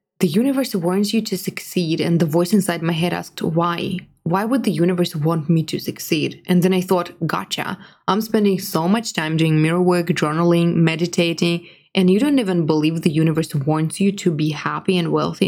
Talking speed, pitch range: 200 wpm, 175-200 Hz